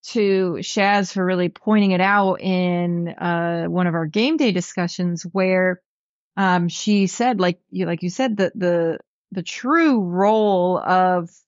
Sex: female